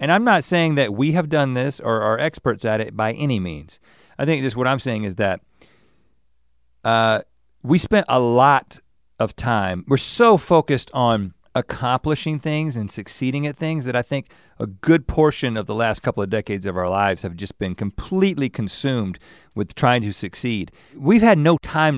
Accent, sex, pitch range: American, male, 95-130 Hz